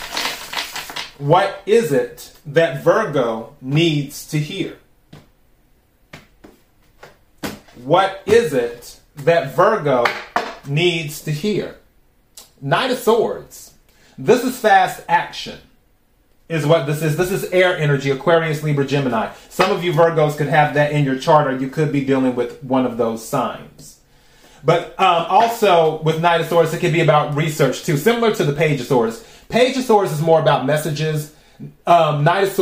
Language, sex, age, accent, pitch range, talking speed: English, male, 30-49, American, 145-180 Hz, 140 wpm